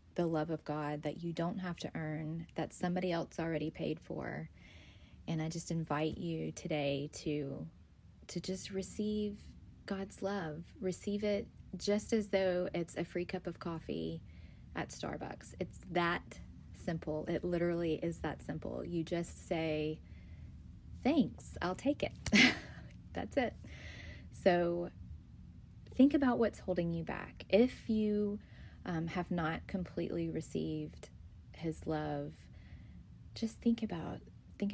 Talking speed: 130 wpm